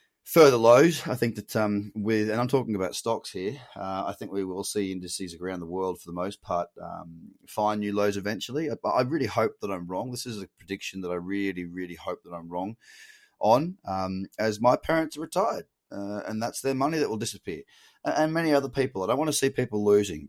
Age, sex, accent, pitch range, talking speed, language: 20-39, male, Australian, 95-125 Hz, 230 wpm, English